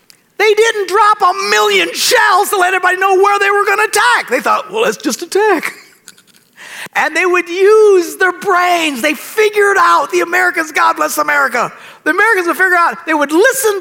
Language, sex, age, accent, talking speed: English, male, 50-69, American, 190 wpm